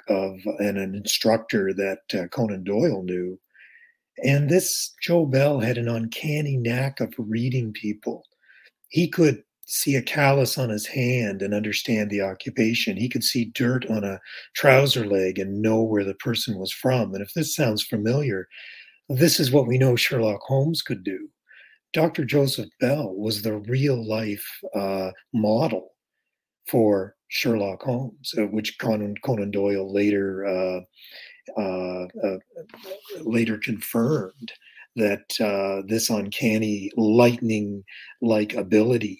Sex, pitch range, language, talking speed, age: male, 100-130 Hz, English, 135 wpm, 40-59